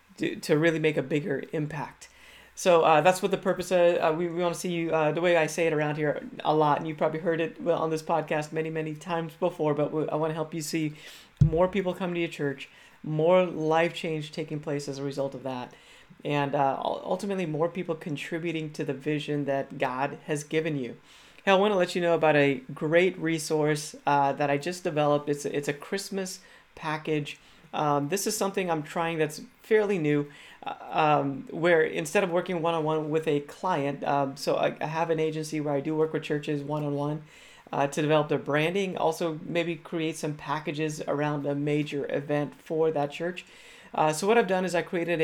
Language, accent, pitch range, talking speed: English, American, 150-170 Hz, 210 wpm